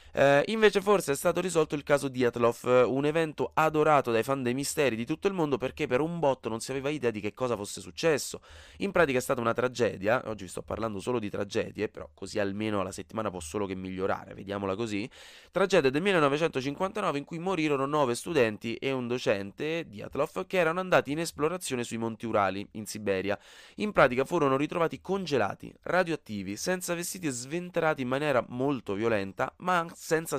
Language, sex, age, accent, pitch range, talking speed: Italian, male, 20-39, native, 95-135 Hz, 195 wpm